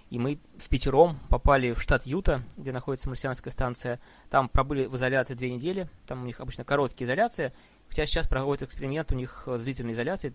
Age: 20-39